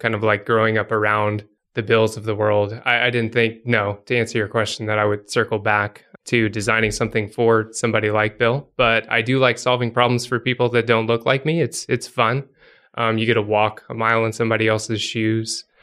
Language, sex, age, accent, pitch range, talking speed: English, male, 20-39, American, 110-120 Hz, 225 wpm